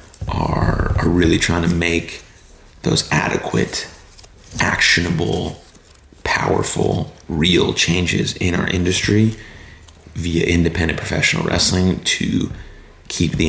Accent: American